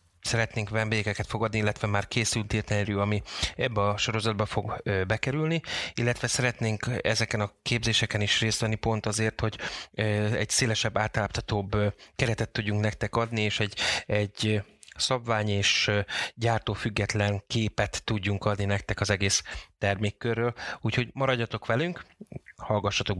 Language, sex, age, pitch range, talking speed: Hungarian, male, 30-49, 100-115 Hz, 125 wpm